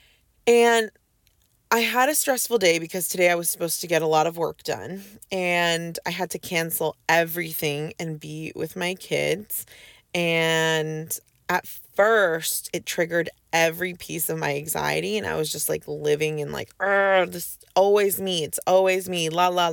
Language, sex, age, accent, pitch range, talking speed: English, female, 20-39, American, 155-195 Hz, 175 wpm